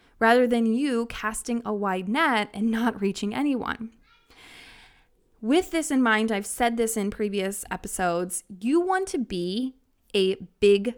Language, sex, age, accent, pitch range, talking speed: English, female, 20-39, American, 200-250 Hz, 150 wpm